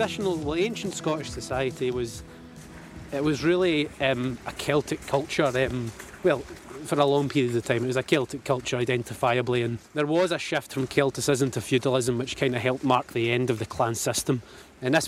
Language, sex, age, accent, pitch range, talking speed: English, male, 20-39, British, 120-135 Hz, 190 wpm